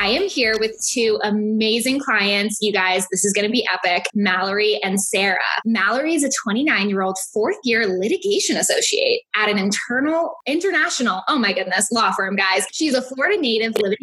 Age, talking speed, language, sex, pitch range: 10-29, 170 wpm, English, female, 195-260 Hz